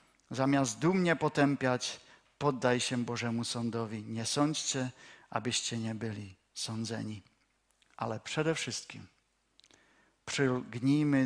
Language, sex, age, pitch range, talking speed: Czech, male, 50-69, 120-150 Hz, 90 wpm